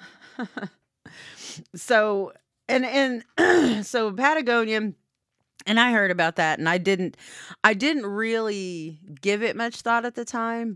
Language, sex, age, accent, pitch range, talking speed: English, female, 30-49, American, 150-195 Hz, 130 wpm